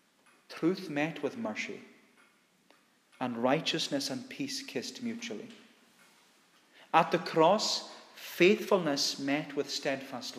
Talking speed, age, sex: 100 wpm, 40-59, male